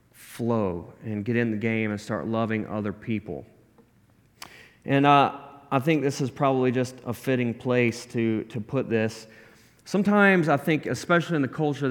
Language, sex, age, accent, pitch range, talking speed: English, male, 30-49, American, 115-145 Hz, 165 wpm